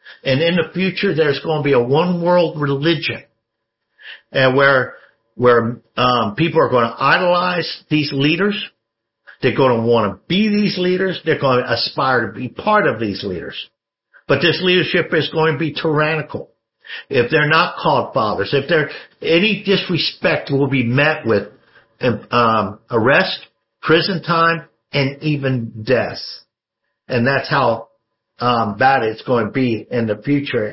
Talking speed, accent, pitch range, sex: 160 wpm, American, 115-165 Hz, male